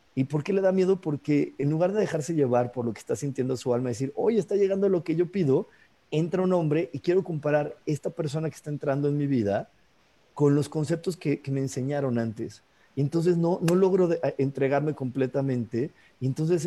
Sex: male